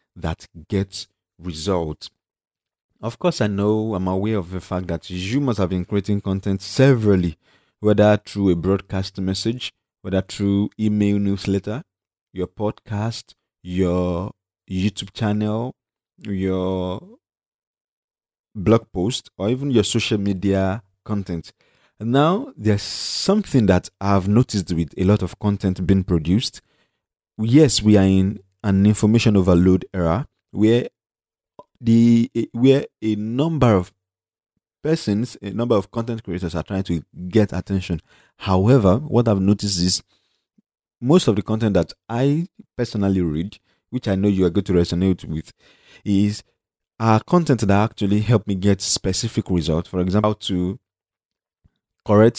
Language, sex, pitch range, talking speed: English, male, 95-110 Hz, 135 wpm